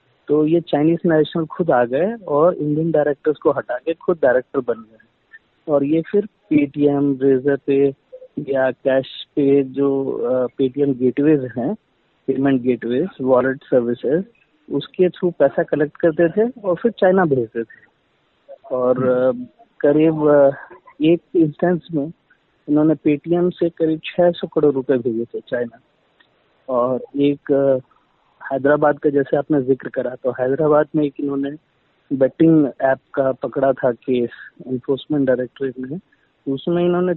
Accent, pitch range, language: native, 135-170 Hz, Hindi